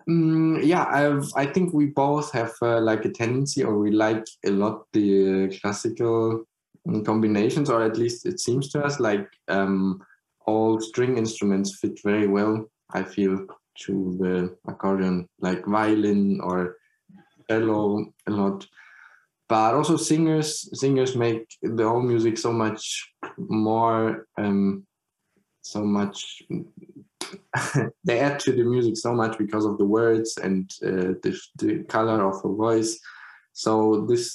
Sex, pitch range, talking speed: male, 100-120 Hz, 140 wpm